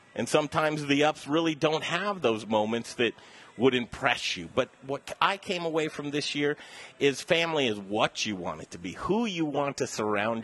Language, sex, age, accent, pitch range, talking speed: English, male, 40-59, American, 110-155 Hz, 200 wpm